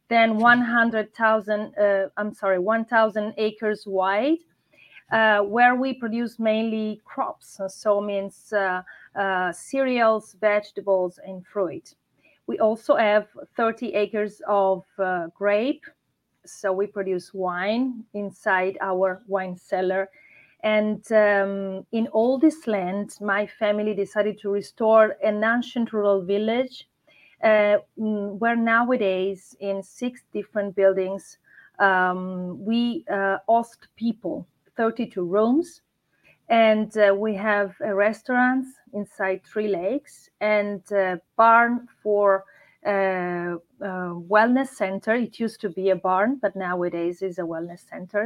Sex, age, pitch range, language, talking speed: female, 30-49, 195-230 Hz, English, 120 wpm